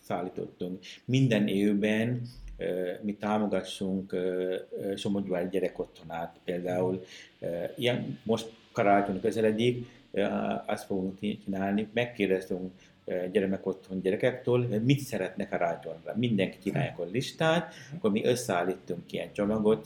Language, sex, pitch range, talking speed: Hungarian, male, 90-115 Hz, 115 wpm